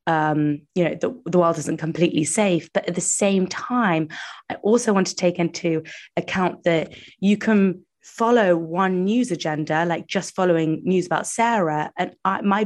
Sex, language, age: female, English, 20-39